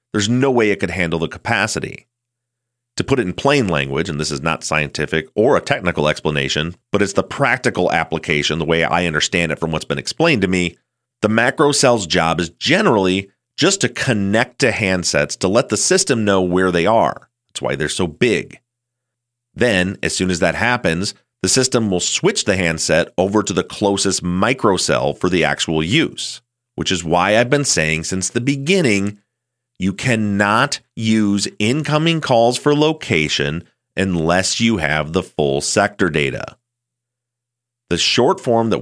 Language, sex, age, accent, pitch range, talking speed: English, male, 30-49, American, 85-120 Hz, 170 wpm